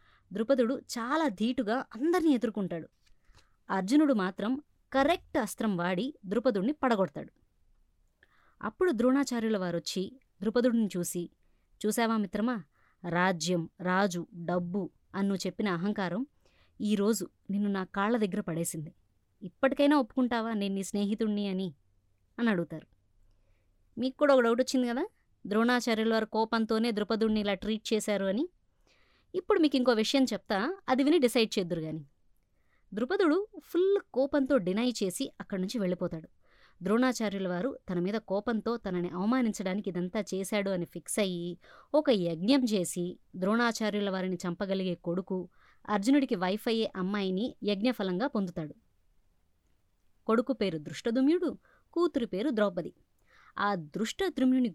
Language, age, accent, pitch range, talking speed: Telugu, 20-39, native, 180-245 Hz, 100 wpm